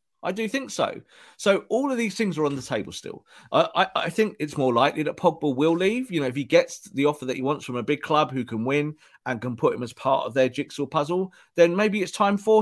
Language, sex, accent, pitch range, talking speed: English, male, British, 130-180 Hz, 270 wpm